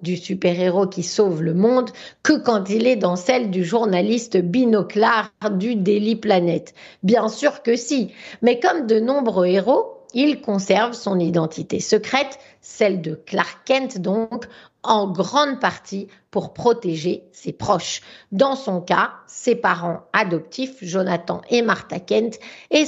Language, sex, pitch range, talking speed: French, female, 185-245 Hz, 145 wpm